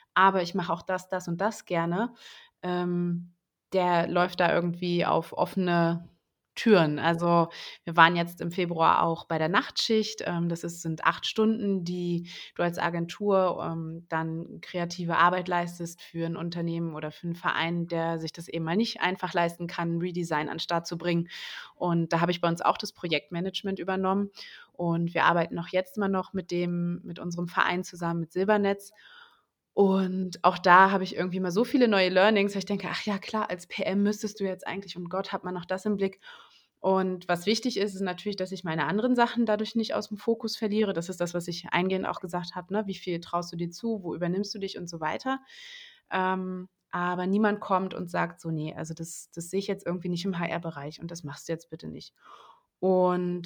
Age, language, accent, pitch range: 20-39, German, German, 170-195 Hz